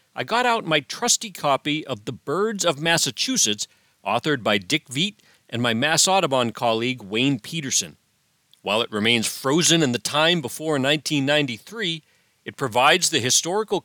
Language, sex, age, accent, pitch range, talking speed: English, male, 40-59, American, 120-170 Hz, 150 wpm